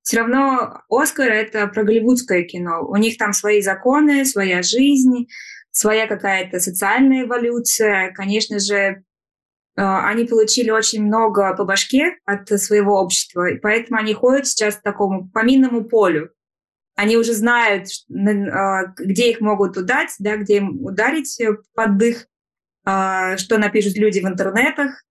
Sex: female